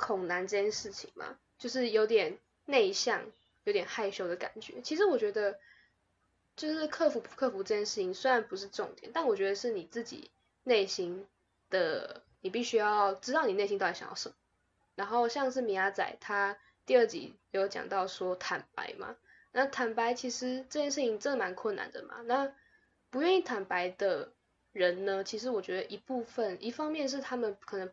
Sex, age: female, 10-29